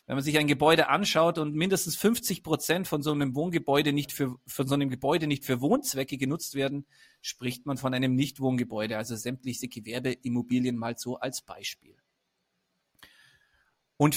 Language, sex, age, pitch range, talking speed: German, male, 30-49, 135-170 Hz, 145 wpm